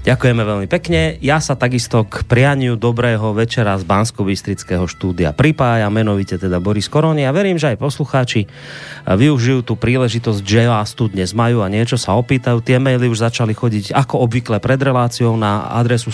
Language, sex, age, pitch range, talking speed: Slovak, male, 30-49, 110-130 Hz, 175 wpm